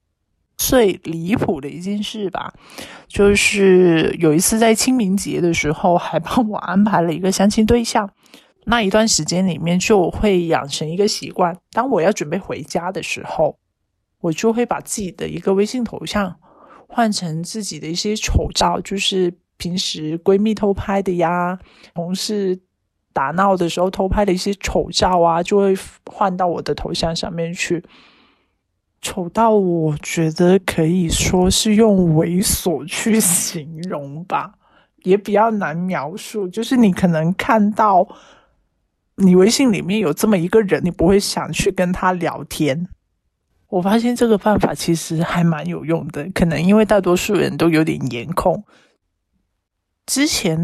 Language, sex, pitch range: Chinese, male, 170-210 Hz